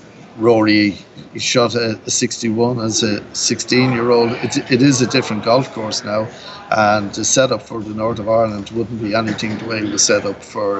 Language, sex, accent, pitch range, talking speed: English, male, Irish, 105-120 Hz, 205 wpm